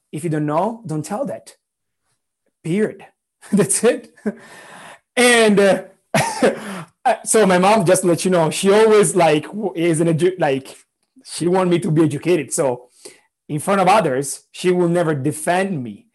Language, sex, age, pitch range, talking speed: English, male, 30-49, 150-195 Hz, 155 wpm